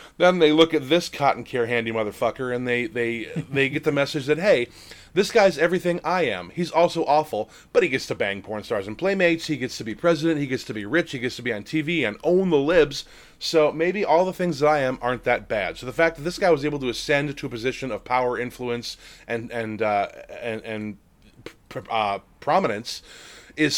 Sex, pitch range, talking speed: male, 115-155 Hz, 230 wpm